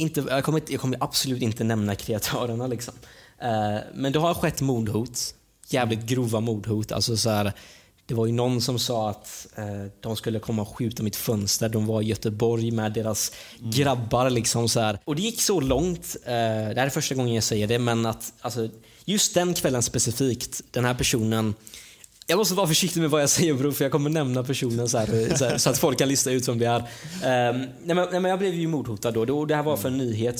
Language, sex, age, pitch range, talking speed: Swedish, male, 20-39, 110-135 Hz, 210 wpm